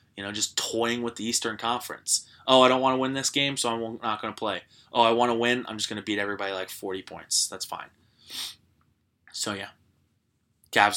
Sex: male